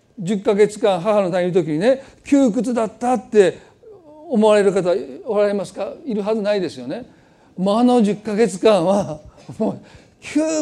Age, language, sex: 40-59, Japanese, male